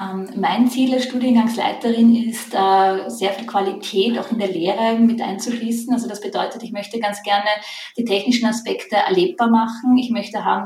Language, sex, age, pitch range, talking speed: German, female, 20-39, 190-230 Hz, 165 wpm